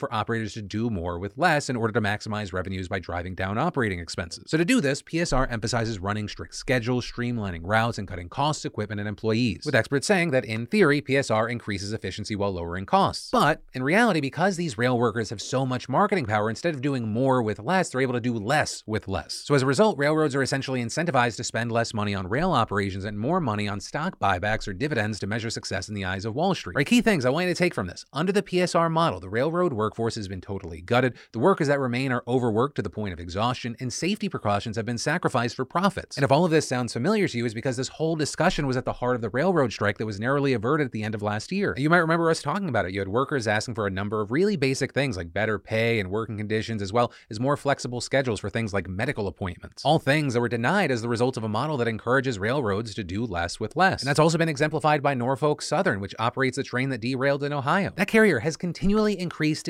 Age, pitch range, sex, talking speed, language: 30-49, 110-150 Hz, male, 250 wpm, English